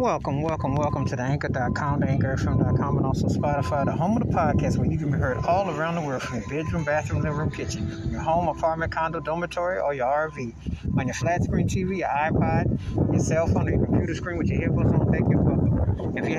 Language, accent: English, American